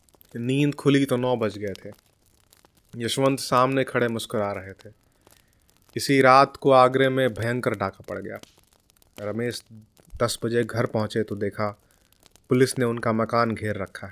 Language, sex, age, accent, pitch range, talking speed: Hindi, male, 30-49, native, 105-130 Hz, 150 wpm